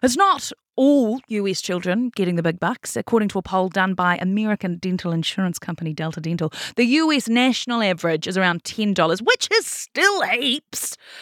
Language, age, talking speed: English, 30-49, 170 wpm